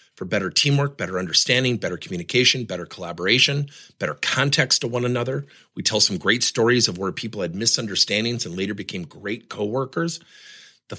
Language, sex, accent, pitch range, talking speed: English, male, American, 110-165 Hz, 165 wpm